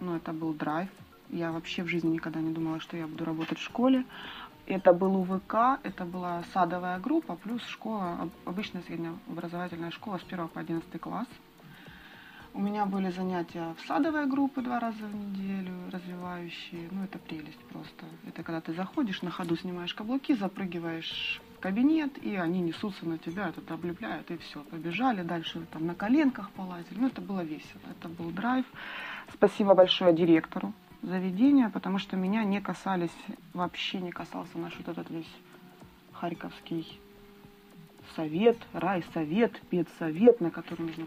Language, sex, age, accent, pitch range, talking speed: Russian, female, 30-49, native, 165-205 Hz, 160 wpm